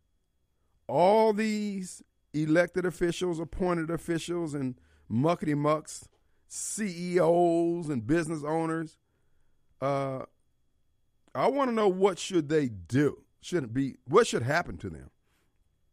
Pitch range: 105-175 Hz